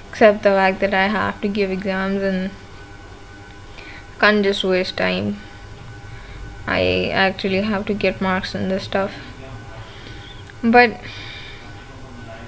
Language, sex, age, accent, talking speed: English, female, 10-29, Indian, 115 wpm